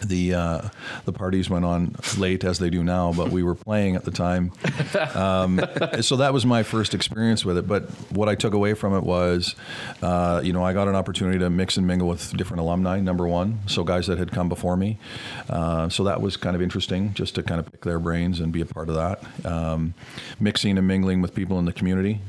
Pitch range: 85-100 Hz